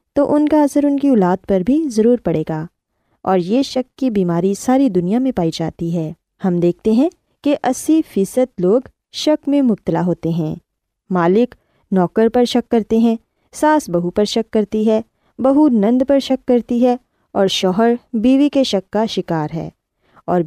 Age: 20-39